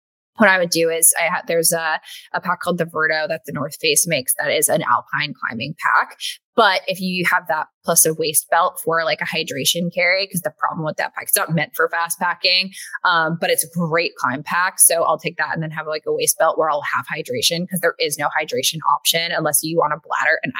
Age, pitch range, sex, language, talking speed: 20-39, 165-210 Hz, female, English, 250 wpm